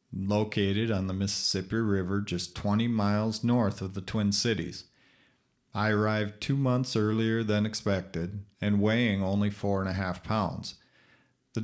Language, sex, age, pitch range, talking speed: English, male, 40-59, 95-115 Hz, 150 wpm